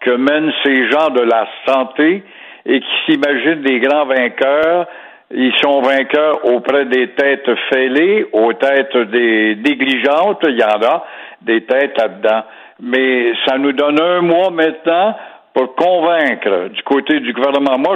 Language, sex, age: French, male, 60-79